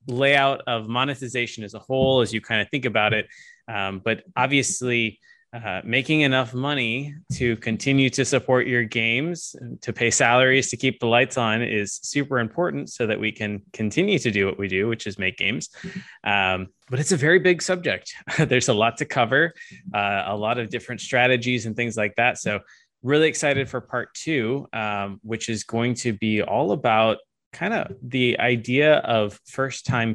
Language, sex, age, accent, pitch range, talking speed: English, male, 20-39, American, 110-135 Hz, 185 wpm